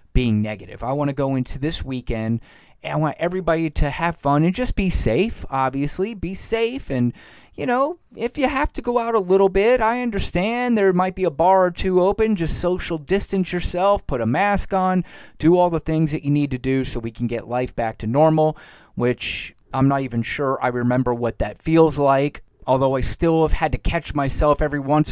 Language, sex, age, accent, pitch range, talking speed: English, male, 30-49, American, 130-165 Hz, 215 wpm